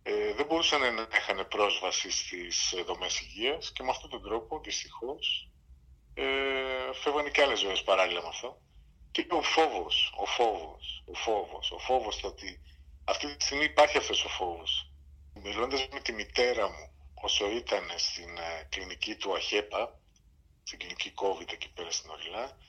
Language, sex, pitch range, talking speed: English, male, 85-140 Hz, 150 wpm